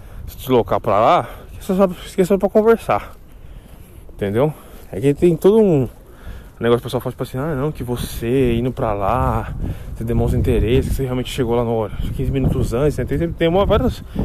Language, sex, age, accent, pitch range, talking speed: Portuguese, male, 20-39, Brazilian, 105-145 Hz, 200 wpm